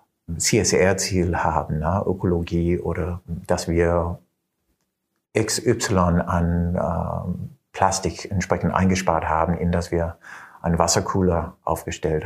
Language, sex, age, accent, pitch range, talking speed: German, male, 50-69, German, 90-105 Hz, 100 wpm